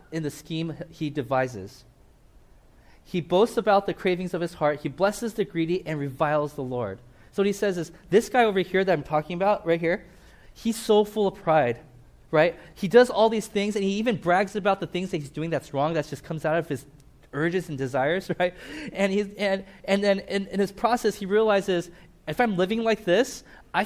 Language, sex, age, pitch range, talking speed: English, male, 20-39, 155-200 Hz, 215 wpm